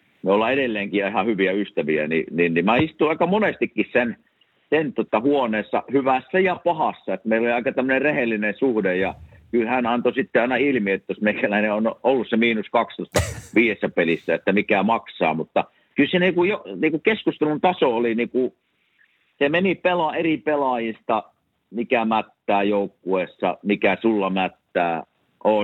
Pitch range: 100-140 Hz